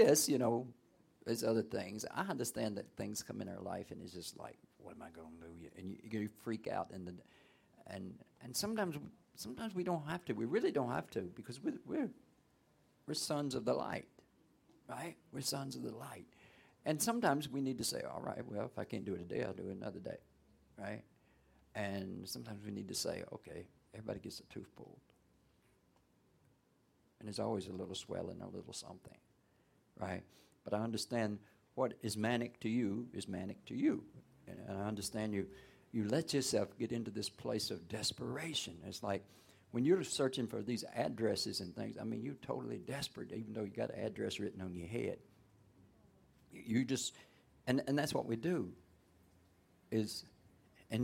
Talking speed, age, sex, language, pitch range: 190 wpm, 50-69, male, English, 100-130 Hz